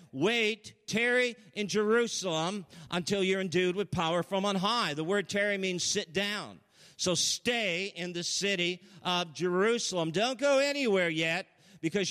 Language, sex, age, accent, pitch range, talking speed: English, male, 50-69, American, 170-215 Hz, 150 wpm